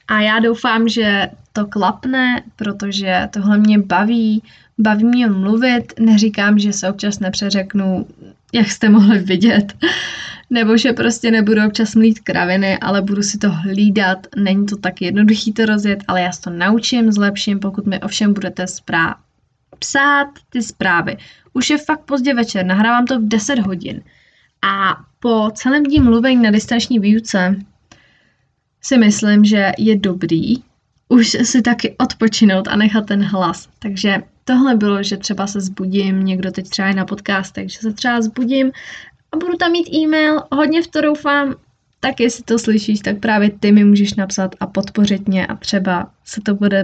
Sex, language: female, Czech